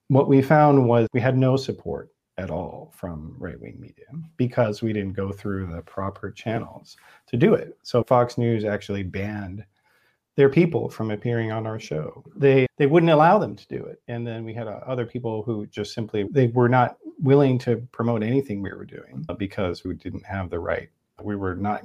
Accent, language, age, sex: American, English, 40-59, male